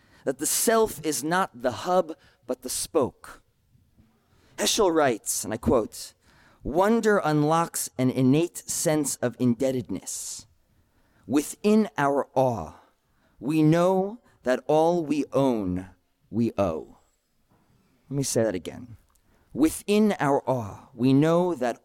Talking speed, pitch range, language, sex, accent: 120 wpm, 125-190 Hz, English, male, American